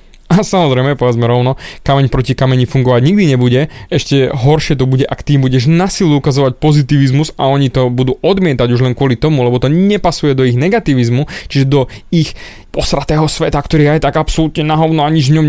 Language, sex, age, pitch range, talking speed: Slovak, male, 20-39, 125-150 Hz, 195 wpm